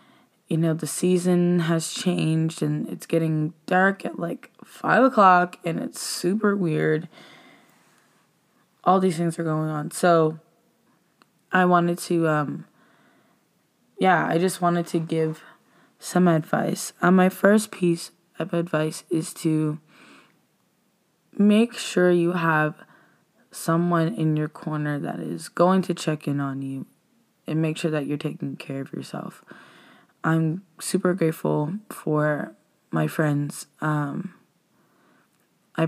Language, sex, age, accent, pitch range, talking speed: English, female, 20-39, American, 155-180 Hz, 130 wpm